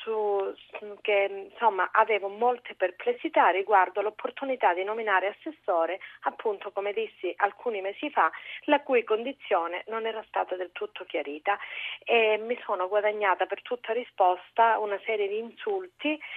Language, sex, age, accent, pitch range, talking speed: Italian, female, 40-59, native, 195-240 Hz, 125 wpm